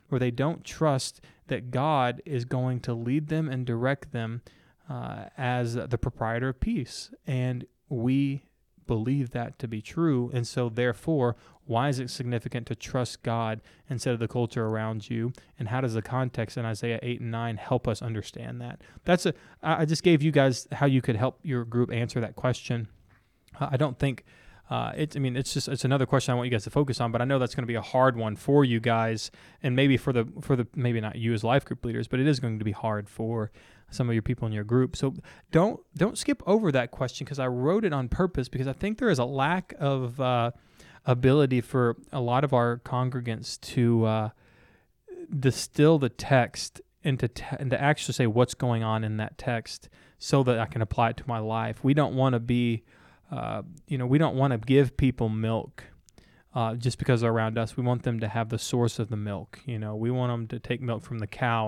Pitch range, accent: 115-135 Hz, American